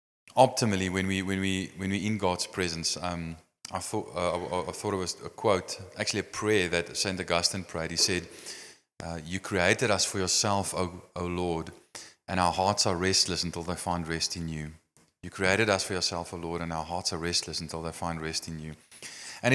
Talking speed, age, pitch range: 210 wpm, 20-39, 90-115 Hz